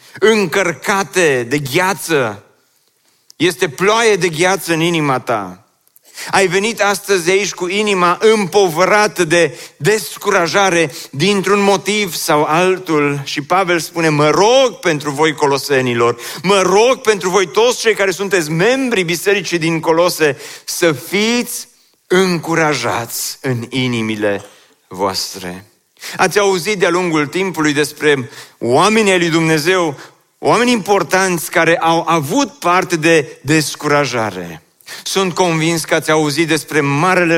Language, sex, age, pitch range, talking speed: Romanian, male, 40-59, 155-190 Hz, 115 wpm